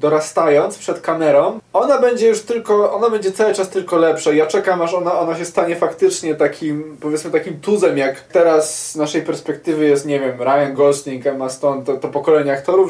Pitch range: 150-210 Hz